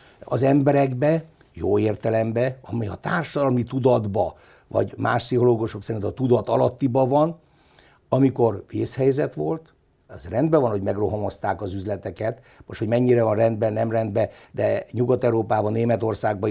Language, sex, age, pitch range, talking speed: Hungarian, male, 60-79, 110-135 Hz, 130 wpm